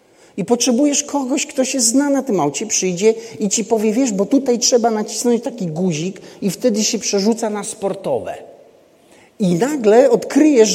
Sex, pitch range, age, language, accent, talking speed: male, 195-255 Hz, 40-59, Polish, native, 160 wpm